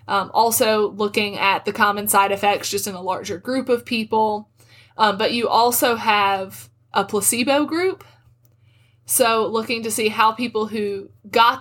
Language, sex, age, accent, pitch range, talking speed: English, female, 20-39, American, 170-225 Hz, 160 wpm